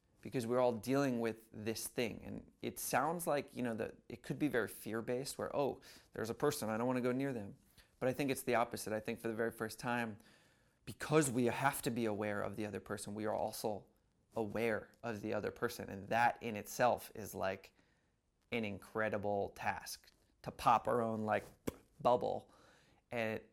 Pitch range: 110-125 Hz